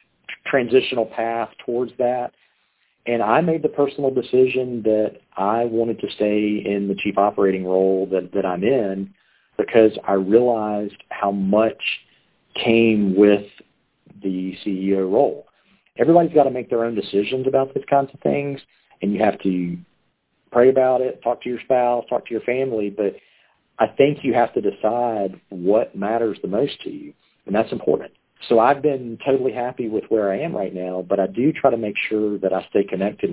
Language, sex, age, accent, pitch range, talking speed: English, male, 40-59, American, 100-125 Hz, 180 wpm